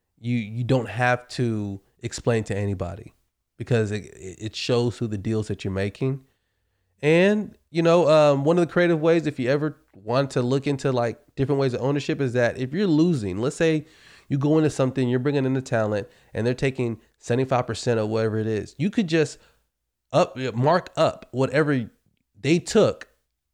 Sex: male